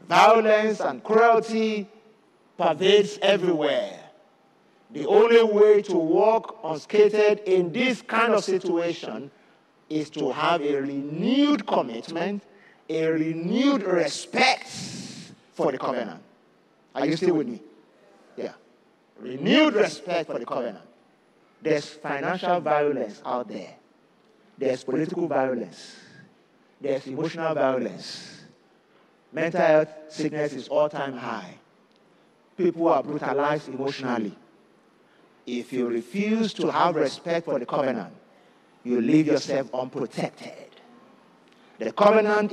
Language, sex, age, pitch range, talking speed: English, male, 50-69, 150-210 Hz, 105 wpm